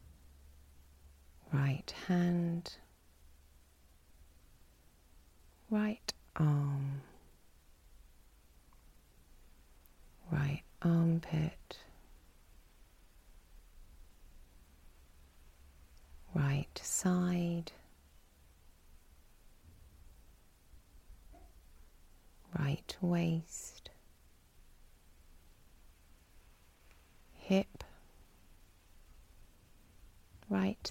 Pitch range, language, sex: 70-100 Hz, English, female